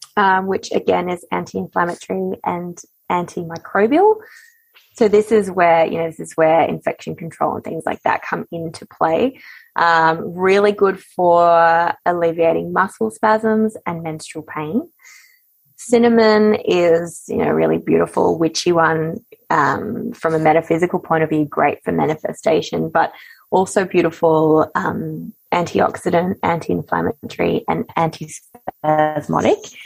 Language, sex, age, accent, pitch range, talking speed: English, female, 20-39, Australian, 165-220 Hz, 125 wpm